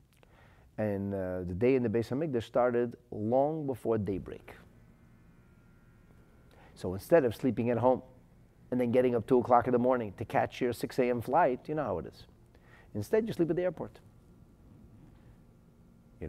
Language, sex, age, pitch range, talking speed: English, male, 40-59, 100-140 Hz, 165 wpm